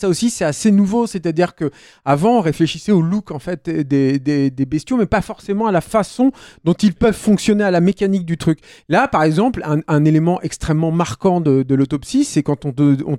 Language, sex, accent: French, male, French